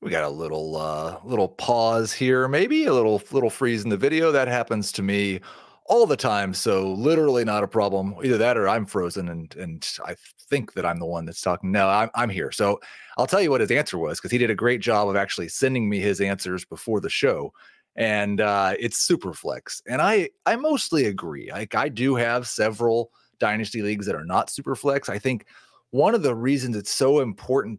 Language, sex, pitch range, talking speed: English, male, 105-140 Hz, 220 wpm